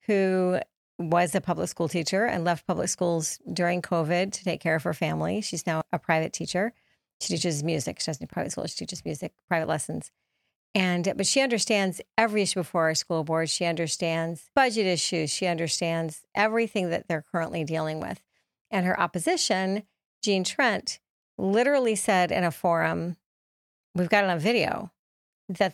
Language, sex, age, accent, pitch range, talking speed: English, female, 40-59, American, 170-205 Hz, 175 wpm